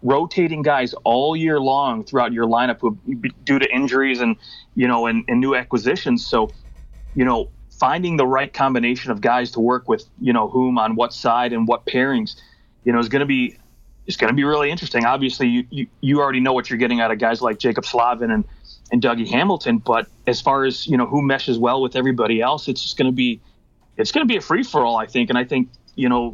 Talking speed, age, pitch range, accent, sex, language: 230 wpm, 30-49, 115-135 Hz, American, male, English